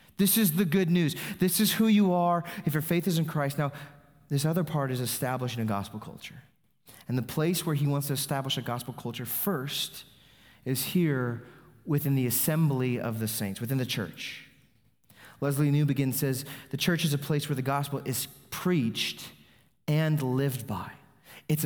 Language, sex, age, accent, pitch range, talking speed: English, male, 30-49, American, 140-180 Hz, 180 wpm